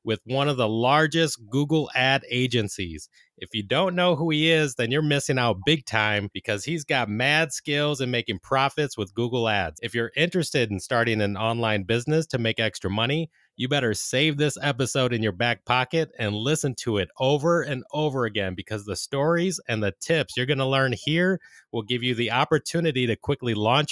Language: English